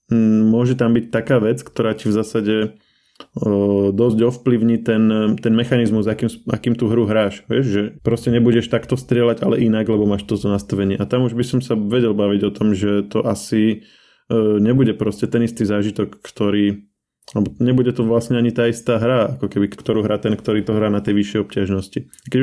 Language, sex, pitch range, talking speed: Slovak, male, 105-120 Hz, 195 wpm